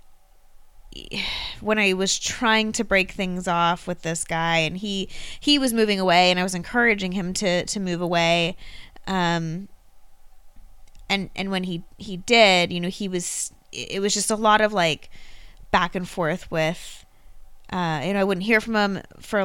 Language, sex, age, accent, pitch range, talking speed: English, female, 20-39, American, 180-220 Hz, 175 wpm